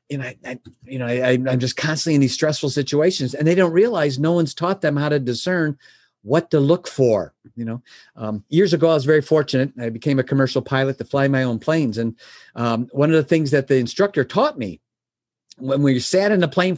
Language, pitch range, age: English, 135-185 Hz, 50-69